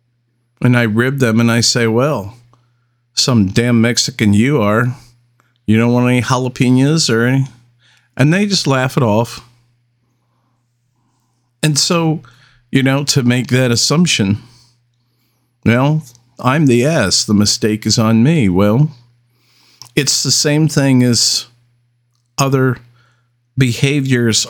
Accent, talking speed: American, 125 wpm